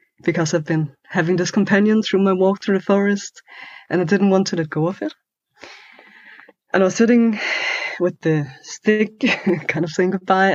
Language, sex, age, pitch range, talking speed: Finnish, female, 20-39, 170-215 Hz, 180 wpm